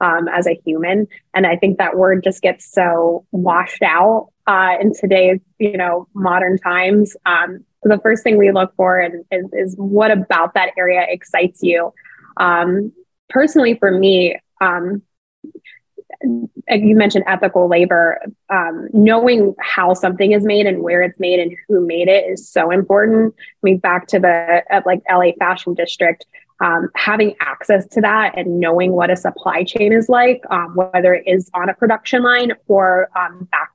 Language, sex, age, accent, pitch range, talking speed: English, female, 20-39, American, 180-210 Hz, 170 wpm